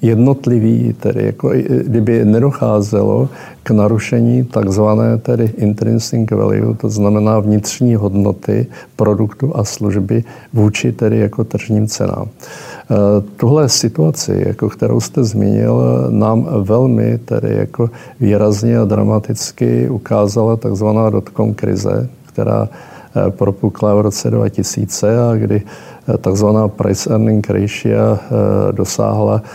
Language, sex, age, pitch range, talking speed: Czech, male, 50-69, 105-120 Hz, 105 wpm